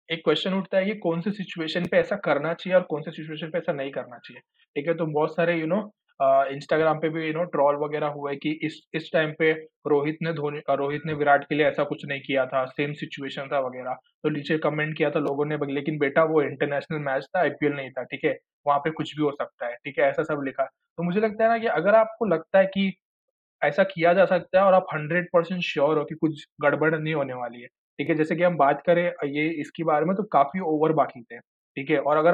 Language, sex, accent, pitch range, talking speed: Hindi, male, native, 145-175 Hz, 265 wpm